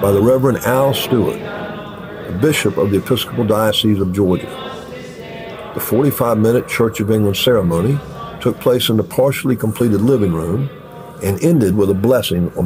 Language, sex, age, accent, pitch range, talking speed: English, male, 50-69, American, 100-140 Hz, 160 wpm